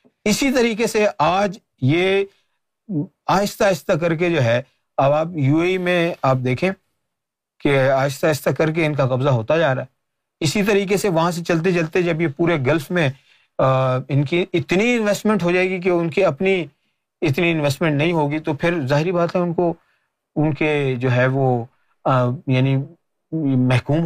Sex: male